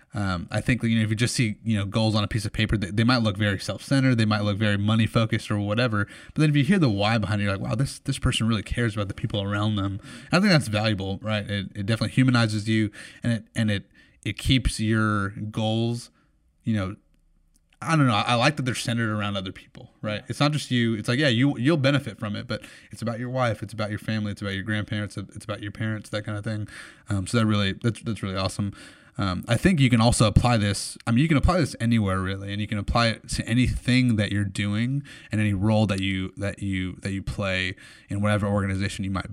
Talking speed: 255 wpm